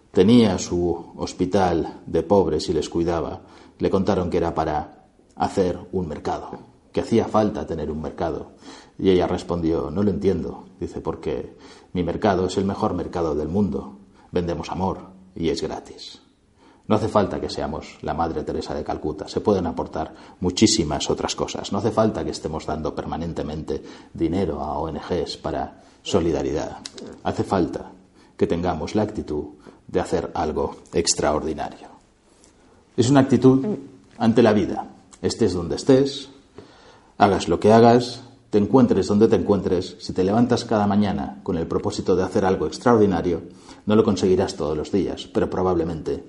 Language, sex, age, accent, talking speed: Spanish, male, 40-59, Spanish, 155 wpm